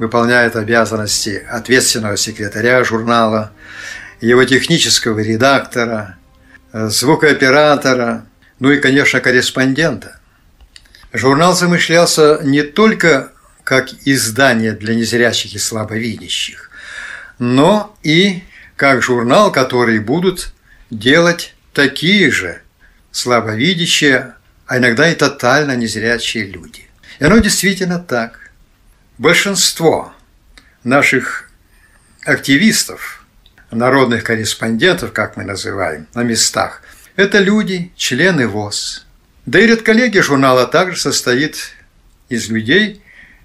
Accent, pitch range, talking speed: native, 115-155 Hz, 90 wpm